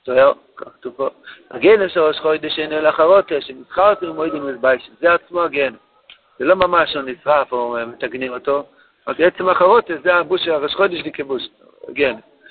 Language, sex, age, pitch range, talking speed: Hebrew, male, 60-79, 150-190 Hz, 175 wpm